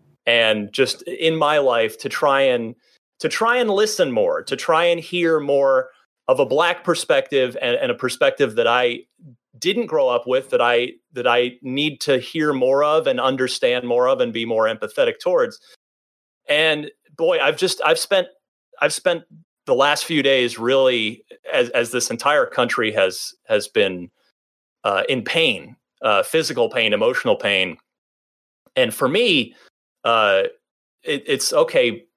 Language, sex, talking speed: English, male, 160 wpm